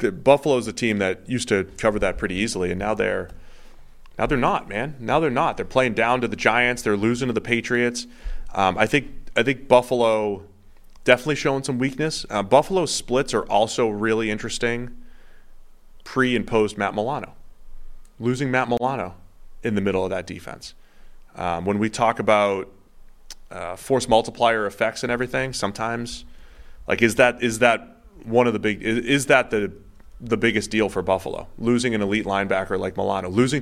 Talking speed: 180 wpm